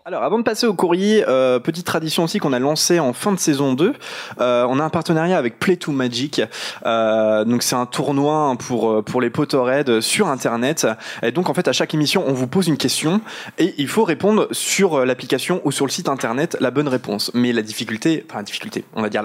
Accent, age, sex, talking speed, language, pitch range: French, 20-39, male, 220 wpm, French, 120-165 Hz